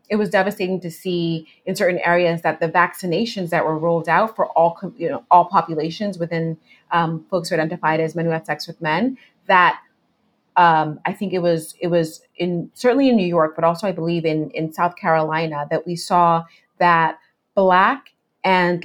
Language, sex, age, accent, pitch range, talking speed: English, female, 30-49, American, 165-195 Hz, 190 wpm